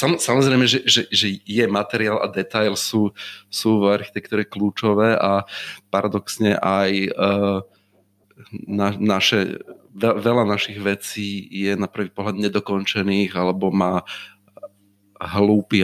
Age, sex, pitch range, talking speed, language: 30-49, male, 100-110 Hz, 115 wpm, Slovak